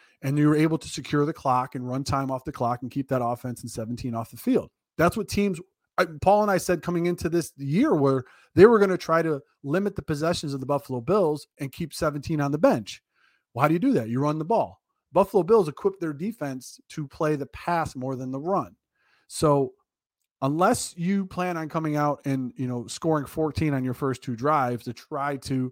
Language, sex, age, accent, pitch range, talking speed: English, male, 30-49, American, 125-160 Hz, 230 wpm